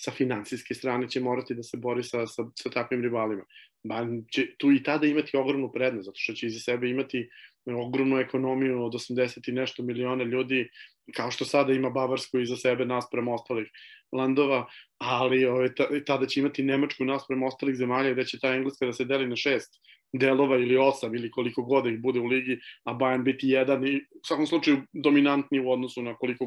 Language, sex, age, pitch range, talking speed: Croatian, male, 20-39, 125-140 Hz, 200 wpm